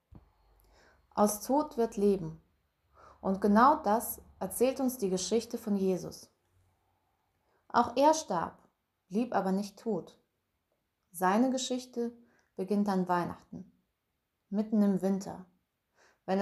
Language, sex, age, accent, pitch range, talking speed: German, female, 20-39, German, 180-225 Hz, 105 wpm